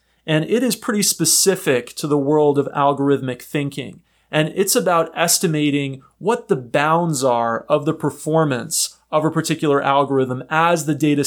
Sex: male